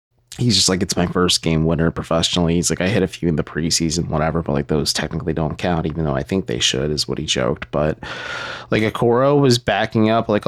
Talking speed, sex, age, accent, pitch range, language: 240 wpm, male, 20-39, American, 85-110 Hz, English